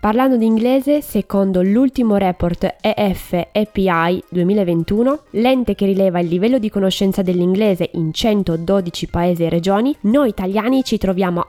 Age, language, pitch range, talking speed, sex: 20-39, Italian, 180-245 Hz, 130 wpm, female